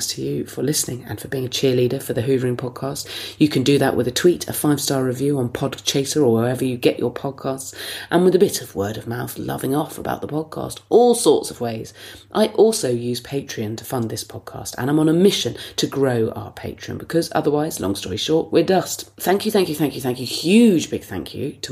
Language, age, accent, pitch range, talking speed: English, 30-49, British, 120-155 Hz, 240 wpm